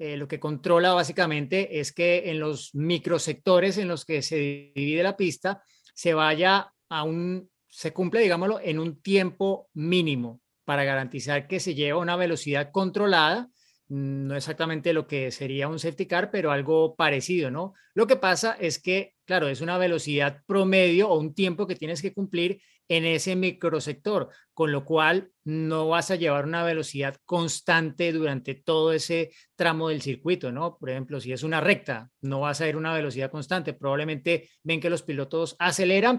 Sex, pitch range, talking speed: male, 150-185 Hz, 175 wpm